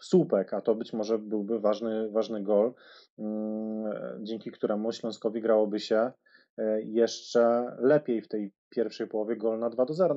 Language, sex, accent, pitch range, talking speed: Polish, male, native, 110-125 Hz, 140 wpm